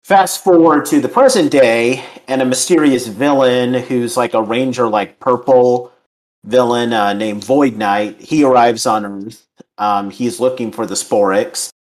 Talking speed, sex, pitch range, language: 155 wpm, male, 105-130 Hz, English